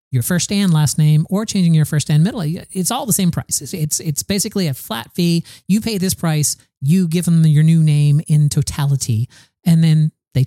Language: English